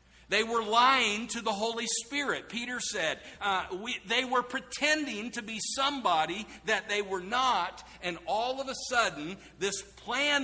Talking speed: 155 wpm